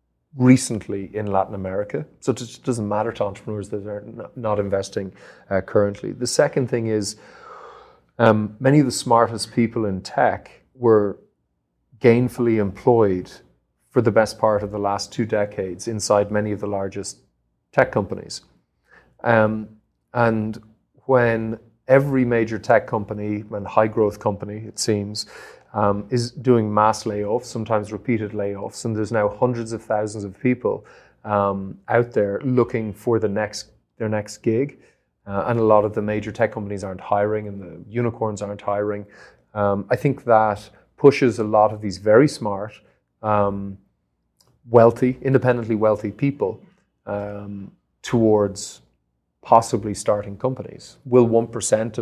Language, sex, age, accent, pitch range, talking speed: Portuguese, male, 30-49, Irish, 100-115 Hz, 145 wpm